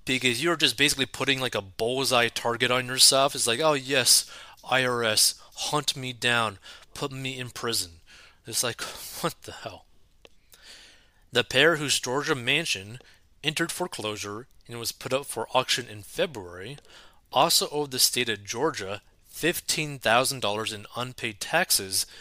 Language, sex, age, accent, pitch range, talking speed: English, male, 30-49, American, 105-145 Hz, 145 wpm